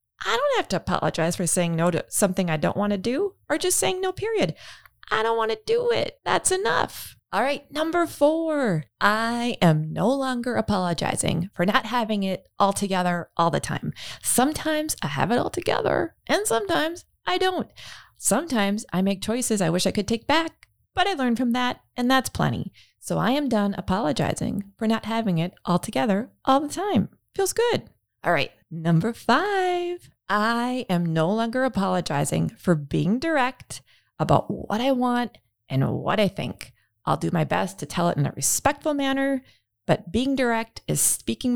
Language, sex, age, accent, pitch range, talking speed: English, female, 20-39, American, 175-260 Hz, 180 wpm